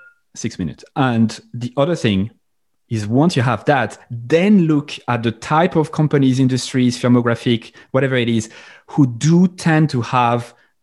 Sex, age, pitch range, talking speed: male, 30-49, 110-140 Hz, 155 wpm